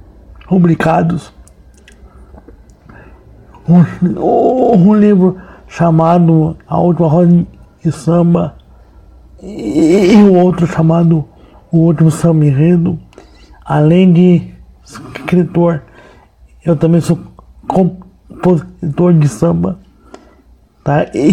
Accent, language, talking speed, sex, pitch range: Brazilian, Portuguese, 80 wpm, male, 135-175 Hz